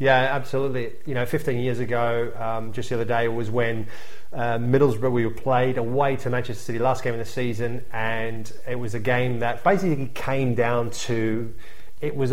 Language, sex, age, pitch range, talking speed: English, male, 30-49, 110-125 Hz, 195 wpm